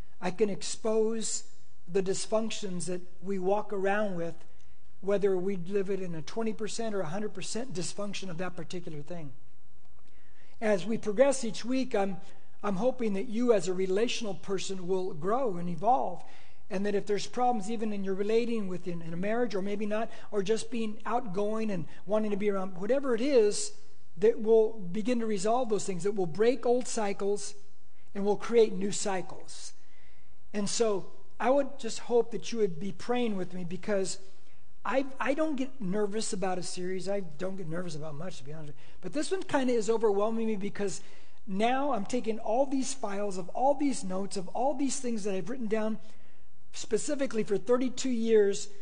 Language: English